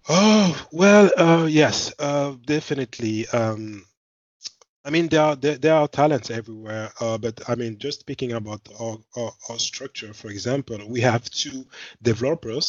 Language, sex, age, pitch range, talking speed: English, male, 20-39, 110-135 Hz, 150 wpm